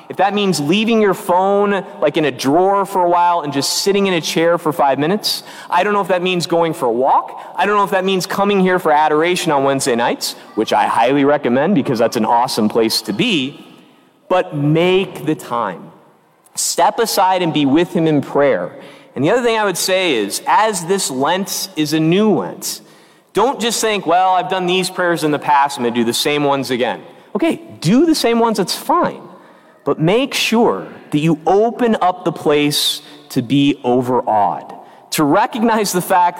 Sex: male